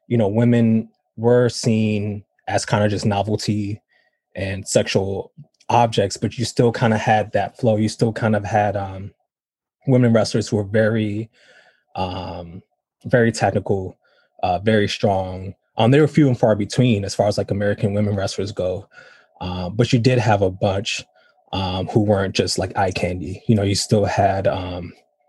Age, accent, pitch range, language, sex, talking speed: 20-39, American, 100-115 Hz, English, male, 175 wpm